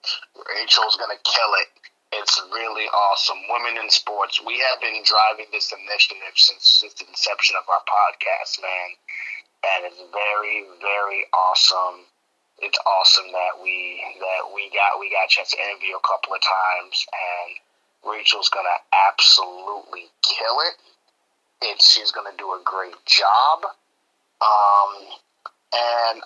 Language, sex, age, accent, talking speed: English, male, 30-49, American, 140 wpm